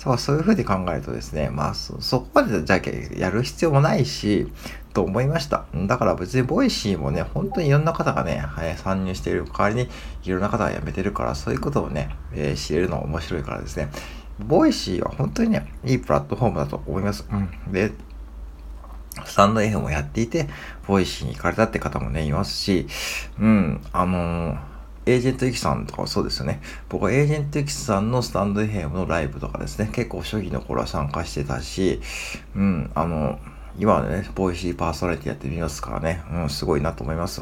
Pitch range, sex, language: 70-105 Hz, male, Japanese